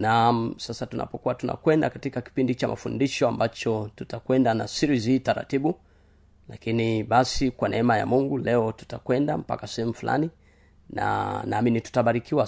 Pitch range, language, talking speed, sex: 105-130 Hz, Swahili, 135 wpm, male